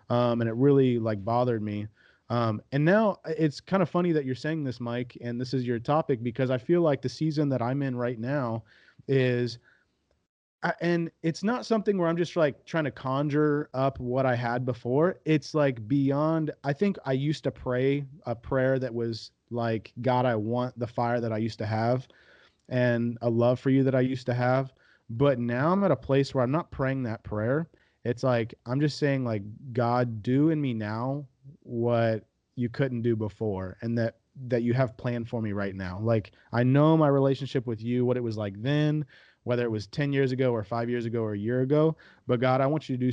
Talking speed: 220 wpm